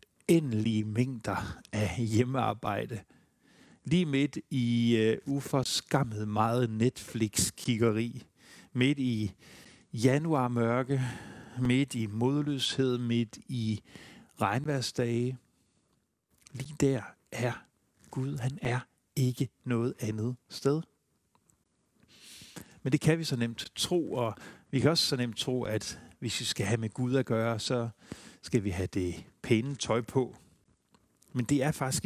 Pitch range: 115-140 Hz